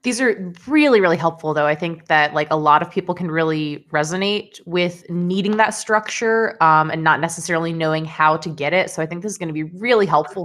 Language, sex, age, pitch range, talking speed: English, female, 20-39, 165-205 Hz, 230 wpm